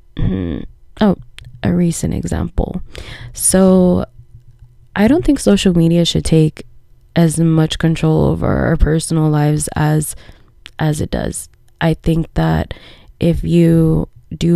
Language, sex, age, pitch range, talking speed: English, female, 20-39, 150-180 Hz, 120 wpm